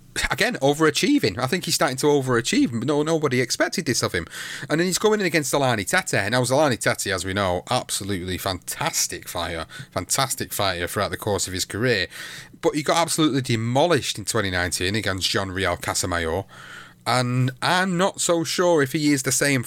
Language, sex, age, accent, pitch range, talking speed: English, male, 30-49, British, 110-140 Hz, 185 wpm